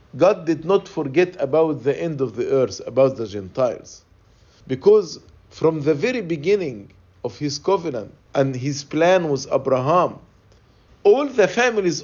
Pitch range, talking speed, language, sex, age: 130-175 Hz, 145 wpm, English, male, 50-69